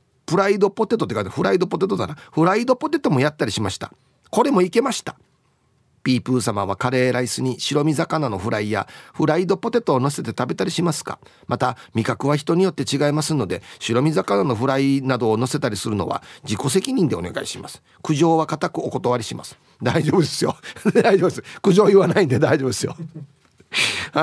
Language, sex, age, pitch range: Japanese, male, 40-59, 125-200 Hz